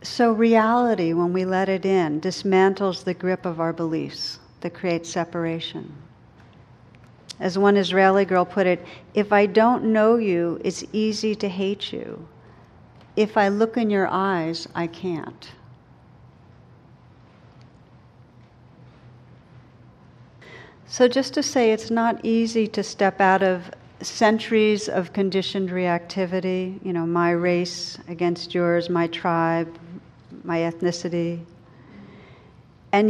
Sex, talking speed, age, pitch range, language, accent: female, 120 wpm, 50-69, 170-205 Hz, English, American